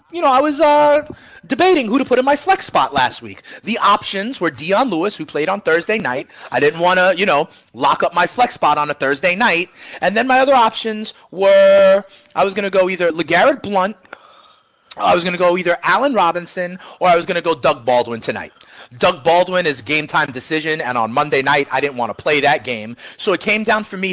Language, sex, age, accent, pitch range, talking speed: English, male, 30-49, American, 150-230 Hz, 230 wpm